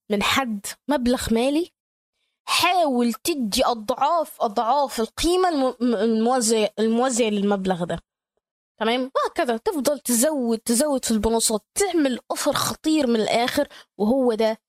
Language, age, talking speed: Arabic, 20-39, 110 wpm